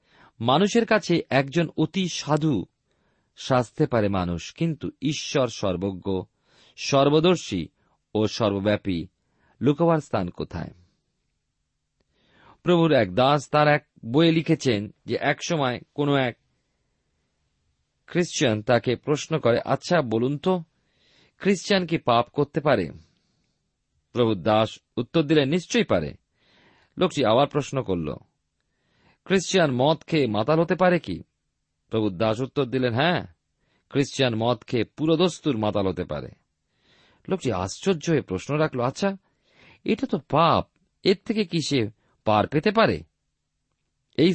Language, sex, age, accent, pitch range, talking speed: Bengali, male, 40-59, native, 105-170 Hz, 110 wpm